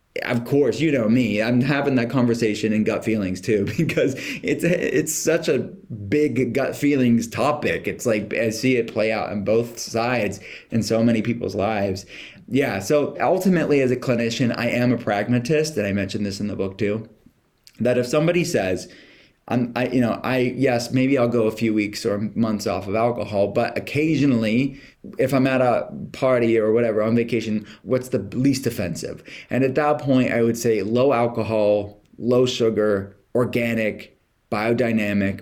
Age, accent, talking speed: 30-49, American, 180 wpm